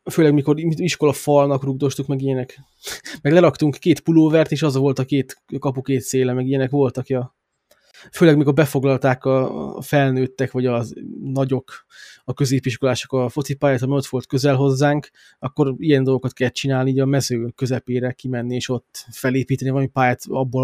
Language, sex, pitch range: Hungarian, male, 130-145 Hz